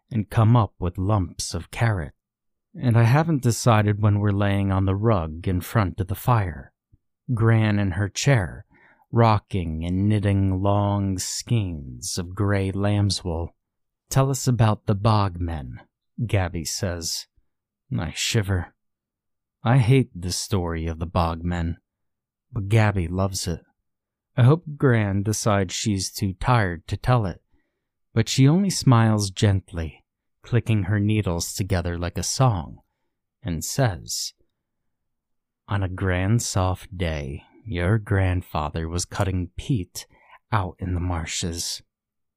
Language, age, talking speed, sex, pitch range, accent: English, 30-49, 135 wpm, male, 90-110 Hz, American